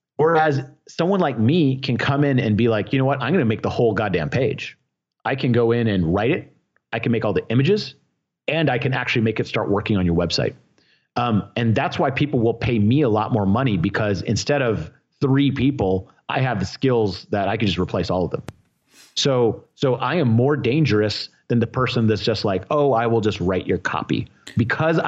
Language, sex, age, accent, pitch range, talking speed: English, male, 30-49, American, 105-135 Hz, 225 wpm